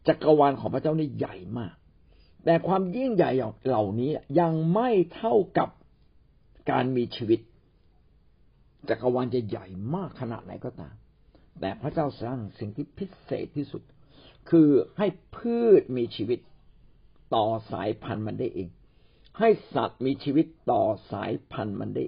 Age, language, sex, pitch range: 60-79, Thai, male, 115-170 Hz